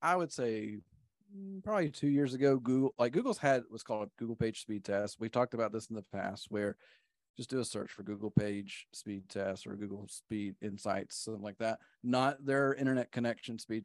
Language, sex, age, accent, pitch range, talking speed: English, male, 40-59, American, 105-130 Hz, 205 wpm